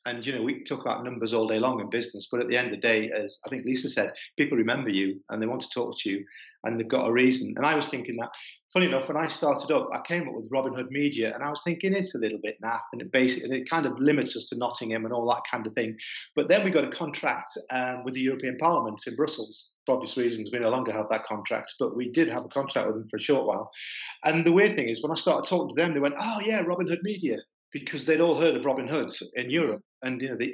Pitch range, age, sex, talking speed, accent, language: 120-170 Hz, 40-59, male, 285 wpm, British, English